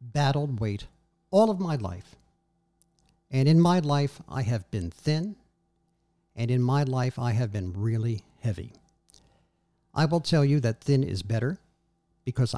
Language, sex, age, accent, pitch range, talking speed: English, male, 60-79, American, 110-155 Hz, 155 wpm